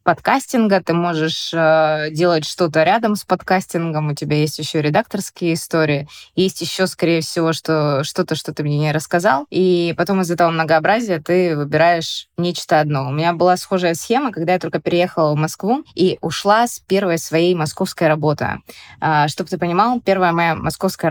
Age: 20-39